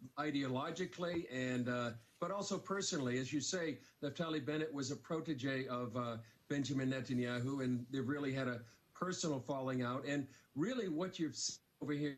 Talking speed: 170 wpm